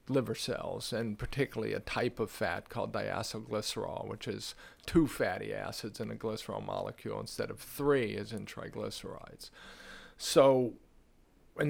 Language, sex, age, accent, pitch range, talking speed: English, male, 50-69, American, 115-140 Hz, 140 wpm